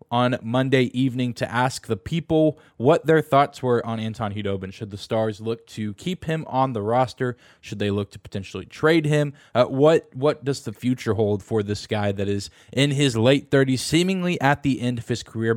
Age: 20-39